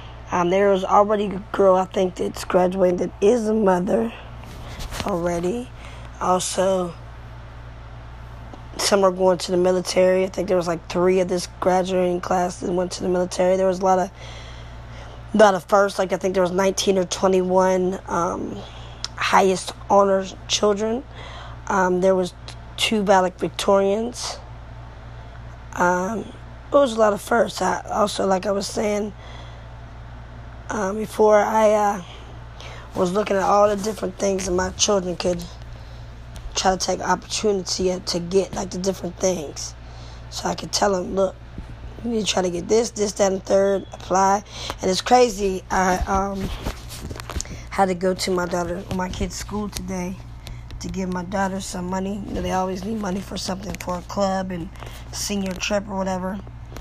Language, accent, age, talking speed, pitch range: English, American, 20-39, 165 wpm, 180-195 Hz